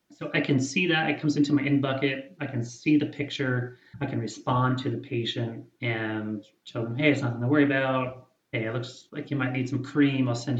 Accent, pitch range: American, 115-140 Hz